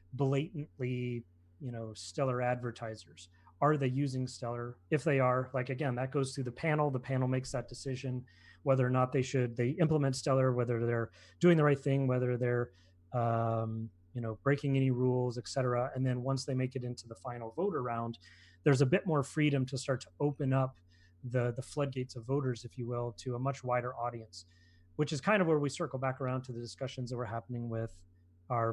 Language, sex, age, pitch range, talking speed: English, male, 30-49, 115-135 Hz, 205 wpm